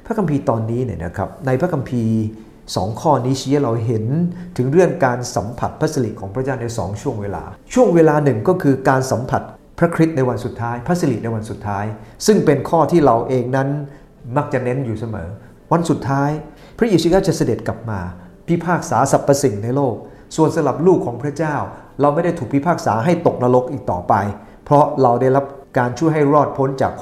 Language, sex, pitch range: English, male, 110-145 Hz